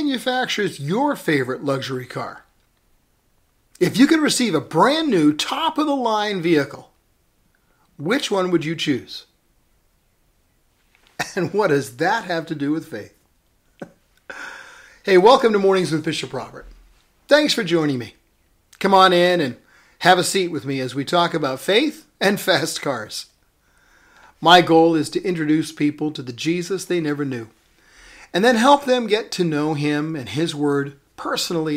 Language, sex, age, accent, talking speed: English, male, 50-69, American, 150 wpm